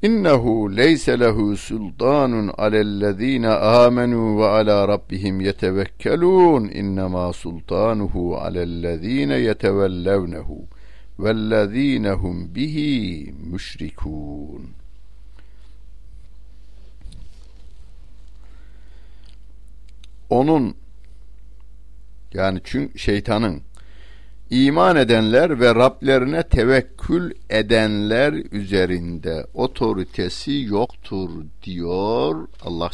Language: Turkish